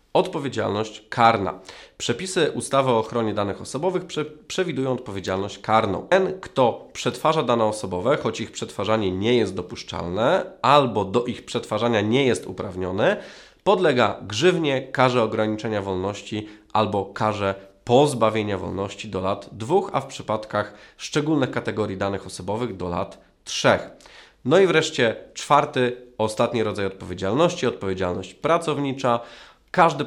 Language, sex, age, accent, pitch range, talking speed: Polish, male, 20-39, native, 100-130 Hz, 120 wpm